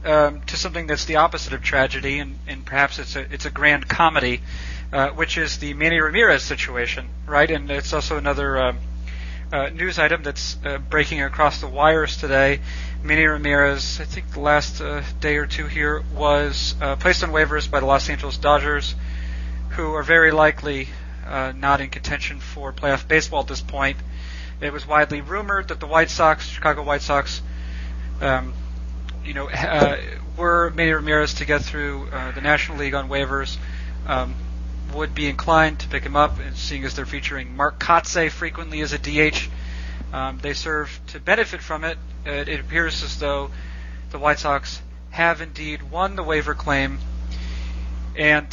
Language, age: English, 40-59